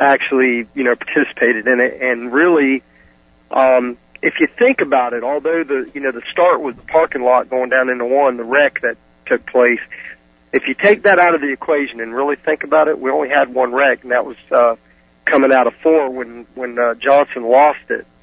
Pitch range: 115-140 Hz